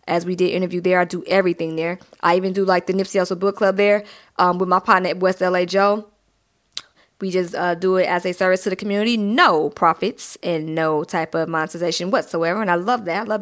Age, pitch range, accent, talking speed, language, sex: 20-39, 175-200 Hz, American, 235 wpm, English, female